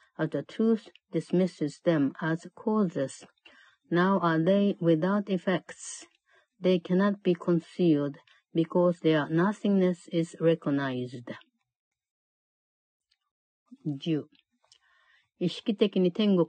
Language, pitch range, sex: Japanese, 155-185 Hz, female